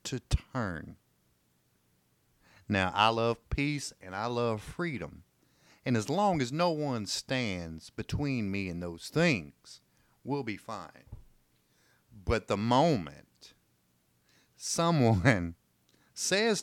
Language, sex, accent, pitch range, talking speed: English, male, American, 80-130 Hz, 110 wpm